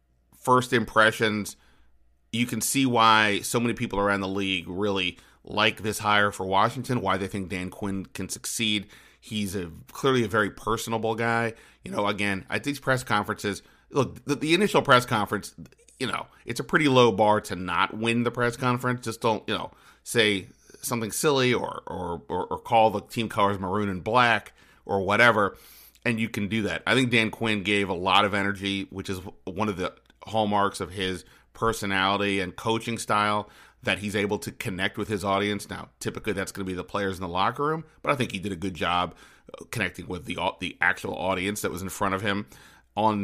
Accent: American